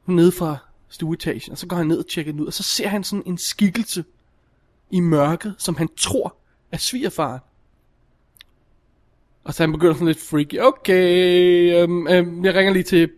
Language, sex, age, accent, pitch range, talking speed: Danish, male, 20-39, native, 150-185 Hz, 185 wpm